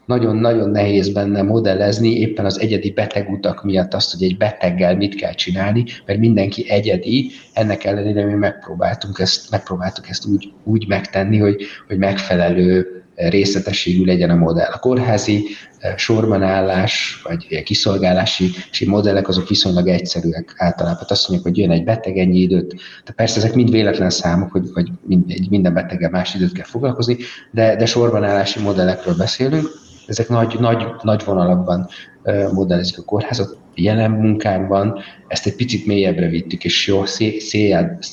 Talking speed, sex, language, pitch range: 145 wpm, male, Hungarian, 90-110 Hz